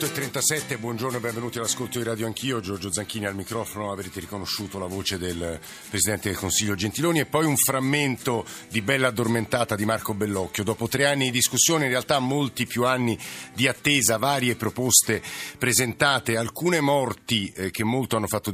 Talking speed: 170 wpm